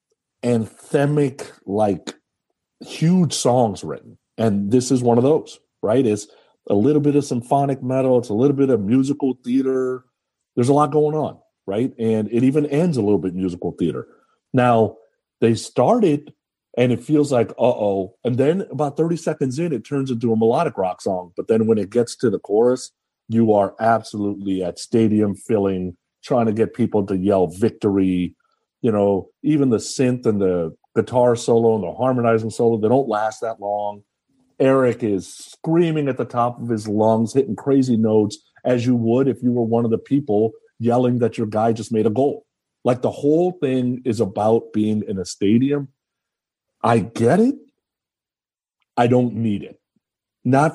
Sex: male